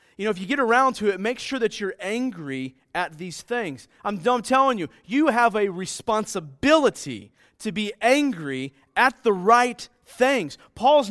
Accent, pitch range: American, 165-240 Hz